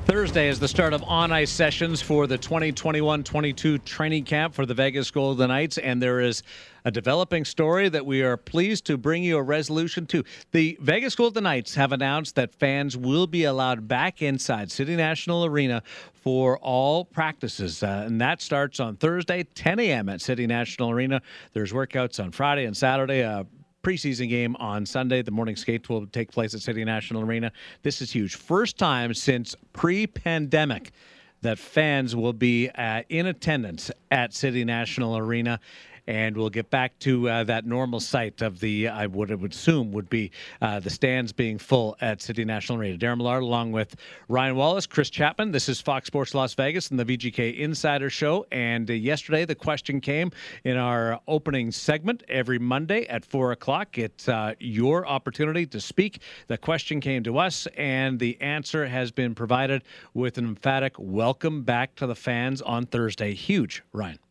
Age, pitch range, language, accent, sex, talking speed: 50-69, 115-150 Hz, English, American, male, 180 wpm